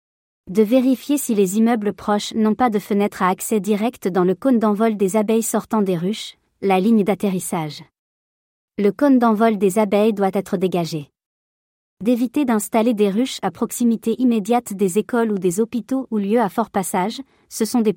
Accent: French